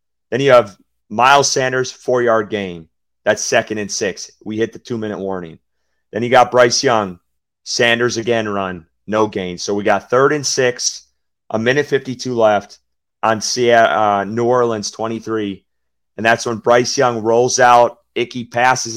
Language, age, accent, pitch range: English, 30-49, American, 95-120 Hz